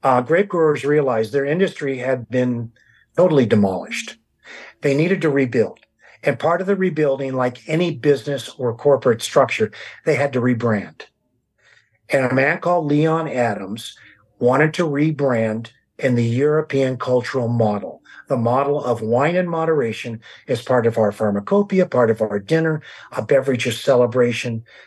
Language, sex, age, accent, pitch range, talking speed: English, male, 50-69, American, 125-160 Hz, 150 wpm